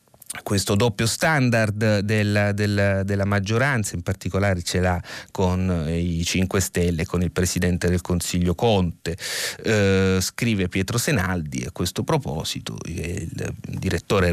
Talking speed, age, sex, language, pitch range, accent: 125 wpm, 30-49, male, Italian, 95-140 Hz, native